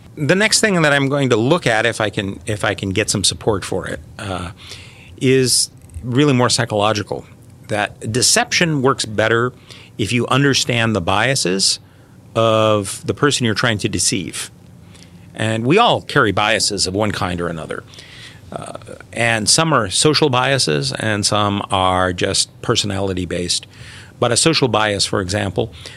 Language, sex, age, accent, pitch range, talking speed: English, male, 40-59, American, 100-130 Hz, 155 wpm